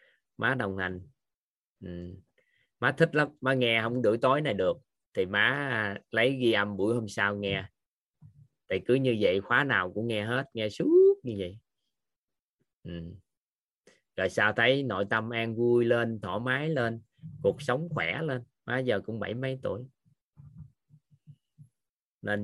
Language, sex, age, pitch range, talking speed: Vietnamese, male, 20-39, 105-135 Hz, 160 wpm